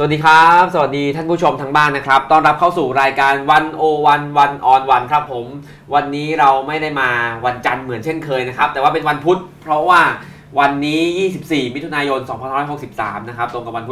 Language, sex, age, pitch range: Thai, male, 20-39, 130-155 Hz